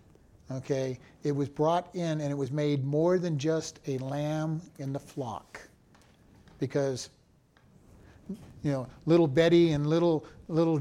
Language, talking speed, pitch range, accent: English, 140 wpm, 135-155 Hz, American